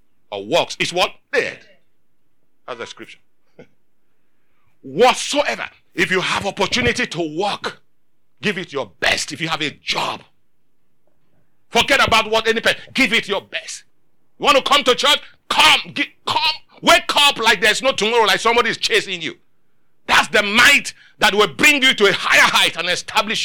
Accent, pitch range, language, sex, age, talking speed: Nigerian, 175-245 Hz, English, male, 50-69, 170 wpm